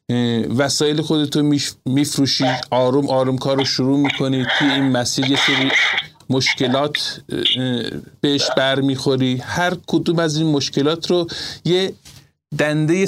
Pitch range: 125-160 Hz